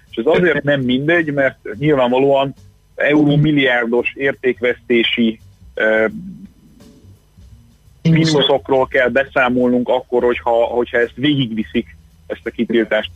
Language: Hungarian